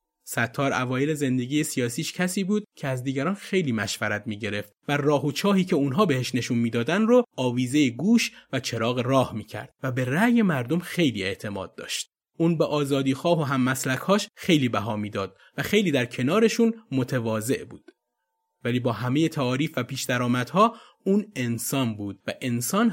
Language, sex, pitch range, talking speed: Persian, male, 125-175 Hz, 170 wpm